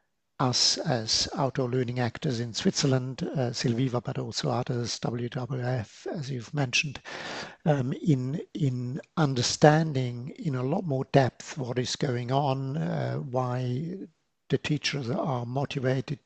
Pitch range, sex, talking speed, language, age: 125-145 Hz, male, 130 wpm, English, 60-79